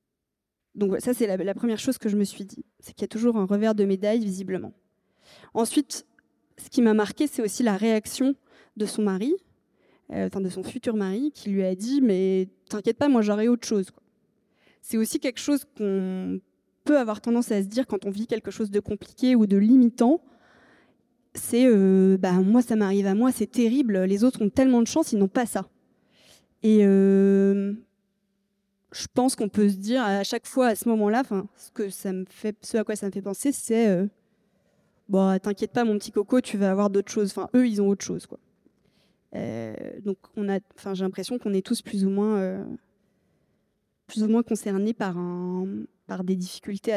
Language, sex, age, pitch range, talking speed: French, female, 20-39, 195-235 Hz, 210 wpm